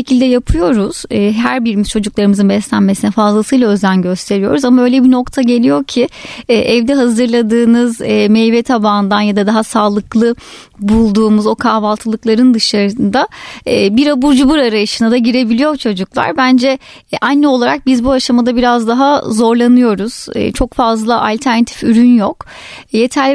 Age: 30-49